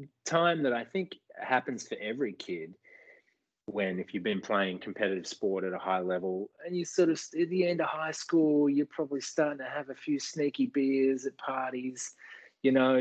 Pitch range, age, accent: 100-145 Hz, 30-49, Australian